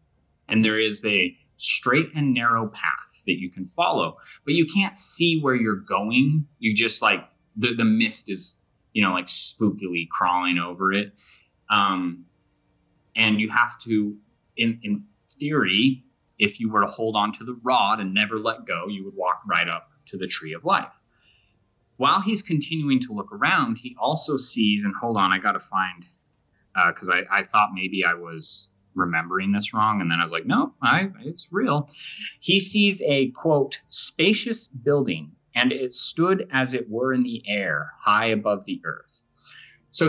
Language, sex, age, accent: English, male, 30-49, American